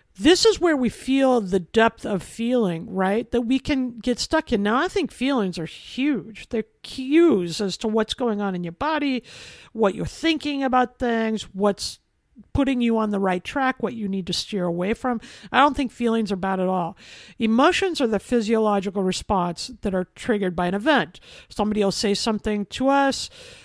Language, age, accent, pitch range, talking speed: English, 50-69, American, 200-260 Hz, 195 wpm